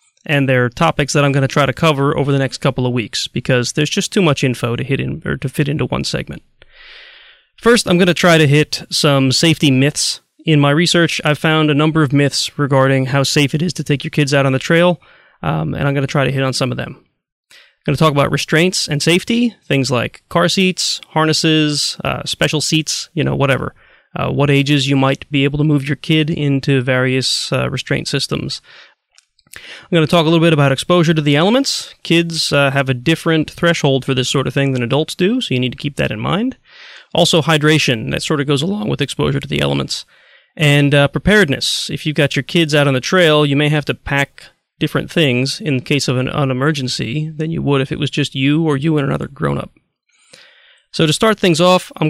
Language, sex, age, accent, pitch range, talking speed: English, male, 30-49, American, 135-165 Hz, 230 wpm